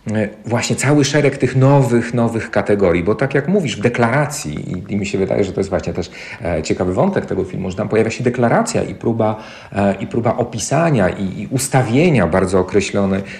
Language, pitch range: Polish, 100-125 Hz